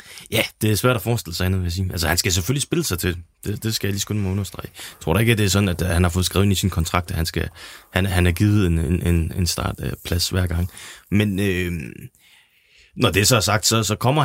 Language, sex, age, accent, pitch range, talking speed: Danish, male, 20-39, native, 90-105 Hz, 270 wpm